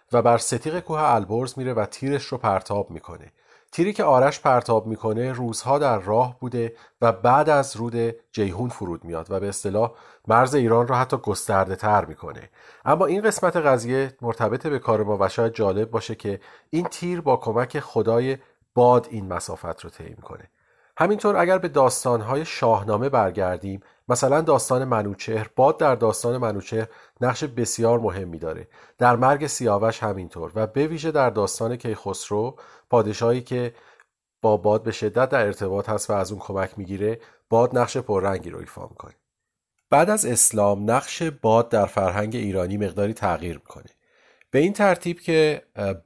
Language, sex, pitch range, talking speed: Persian, male, 105-130 Hz, 160 wpm